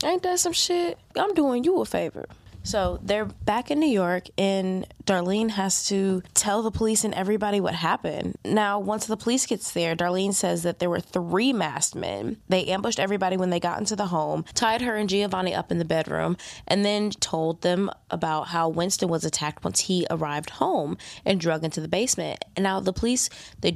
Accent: American